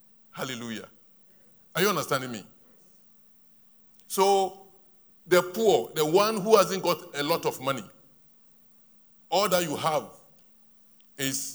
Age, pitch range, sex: 50-69, 120-175 Hz, male